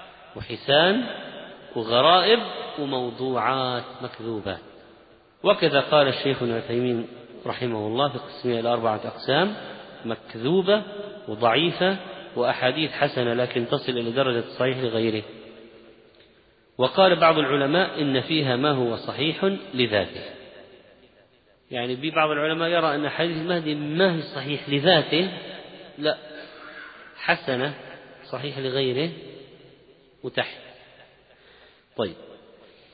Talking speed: 90 wpm